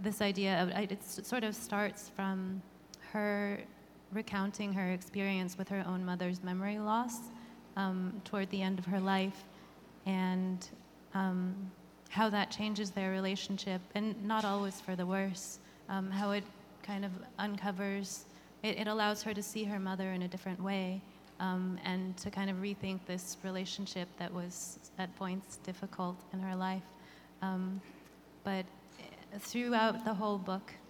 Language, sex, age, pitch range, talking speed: English, female, 20-39, 185-205 Hz, 150 wpm